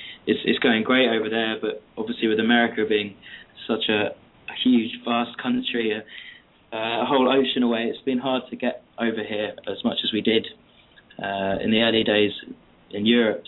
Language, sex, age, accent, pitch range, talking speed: English, male, 20-39, British, 105-120 Hz, 185 wpm